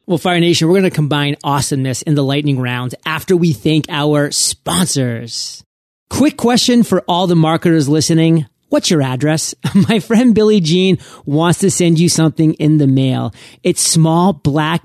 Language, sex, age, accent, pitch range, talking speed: English, male, 30-49, American, 145-180 Hz, 170 wpm